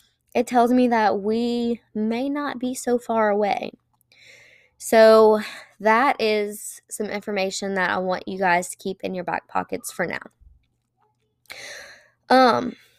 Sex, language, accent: female, English, American